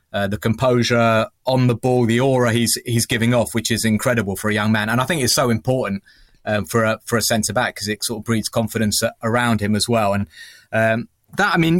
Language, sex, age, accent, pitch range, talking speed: English, male, 30-49, British, 110-125 Hz, 245 wpm